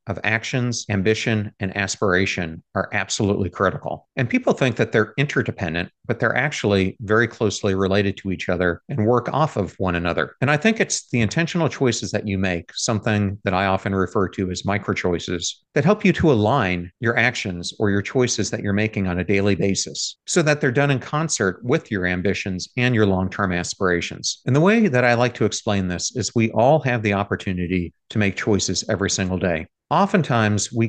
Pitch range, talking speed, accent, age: 95-125 Hz, 195 wpm, American, 50-69